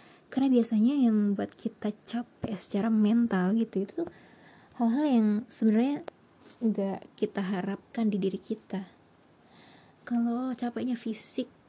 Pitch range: 200-240 Hz